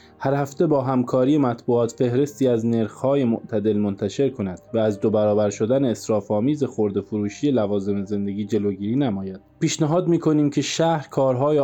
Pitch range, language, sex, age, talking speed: 110-140 Hz, Persian, male, 20-39, 145 wpm